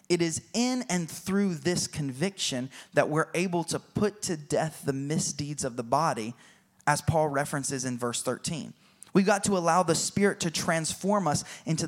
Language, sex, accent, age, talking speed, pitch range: English, male, American, 20-39, 175 wpm, 130-170 Hz